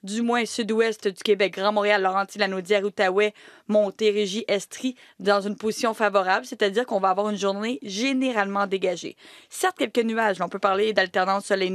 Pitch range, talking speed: 195-230 Hz, 165 wpm